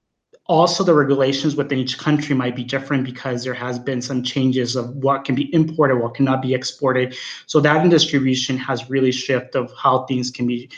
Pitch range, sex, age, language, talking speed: 130-150 Hz, male, 30-49, English, 195 wpm